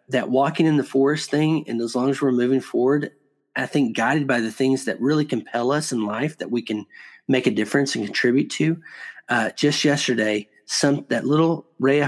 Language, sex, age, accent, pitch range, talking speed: English, male, 40-59, American, 115-140 Hz, 210 wpm